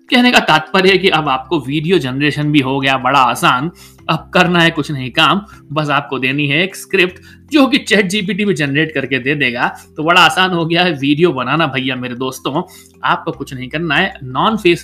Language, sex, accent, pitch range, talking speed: Hindi, male, native, 140-210 Hz, 215 wpm